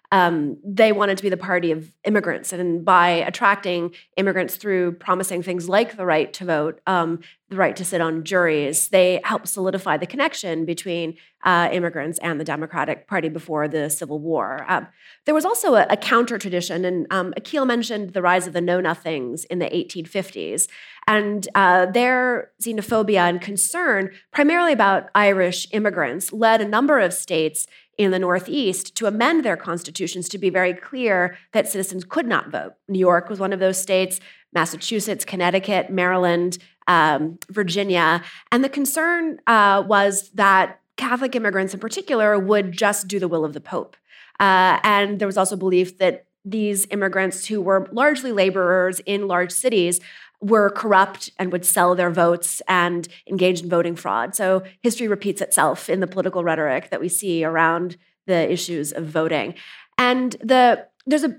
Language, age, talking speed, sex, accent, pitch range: English, 30-49, 165 wpm, female, American, 175-210 Hz